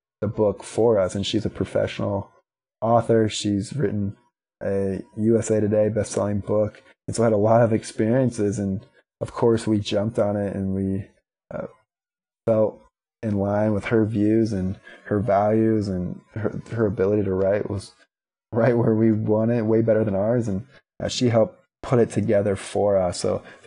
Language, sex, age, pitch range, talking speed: English, male, 20-39, 100-110 Hz, 175 wpm